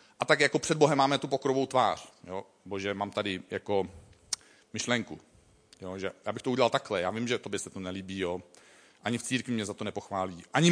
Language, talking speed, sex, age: Czech, 215 wpm, male, 40-59